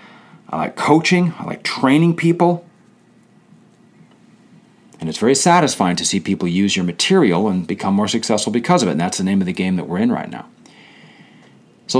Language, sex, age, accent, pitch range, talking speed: English, male, 40-59, American, 95-145 Hz, 185 wpm